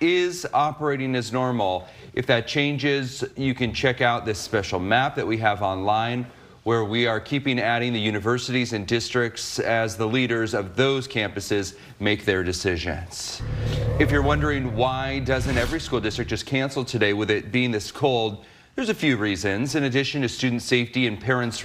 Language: English